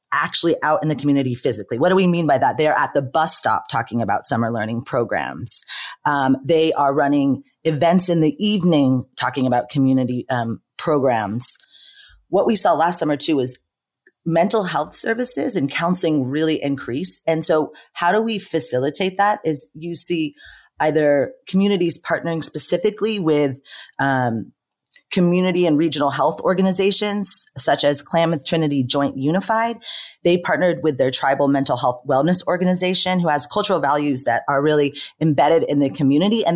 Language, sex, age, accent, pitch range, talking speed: English, female, 30-49, American, 140-180 Hz, 160 wpm